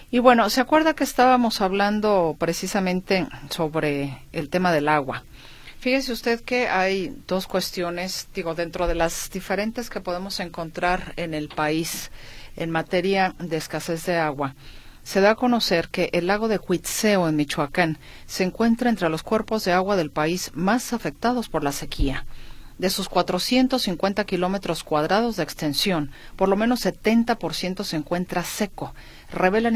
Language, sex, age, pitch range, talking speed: Spanish, female, 40-59, 155-200 Hz, 155 wpm